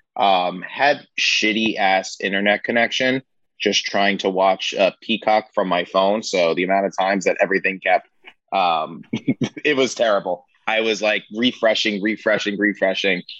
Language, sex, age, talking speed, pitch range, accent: English, male, 20-39, 150 wpm, 95-110 Hz, American